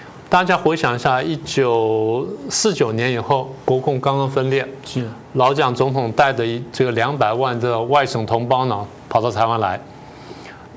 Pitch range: 120-145 Hz